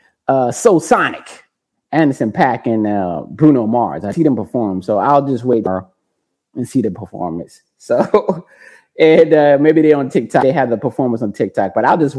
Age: 20-39